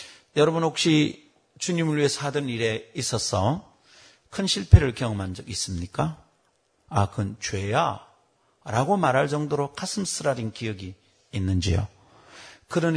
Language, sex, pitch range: Korean, male, 105-165 Hz